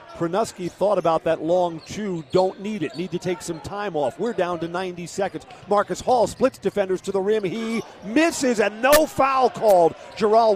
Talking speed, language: 195 wpm, English